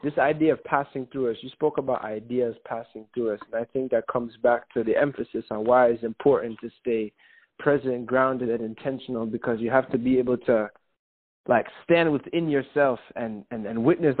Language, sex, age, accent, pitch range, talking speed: English, male, 20-39, American, 110-130 Hz, 200 wpm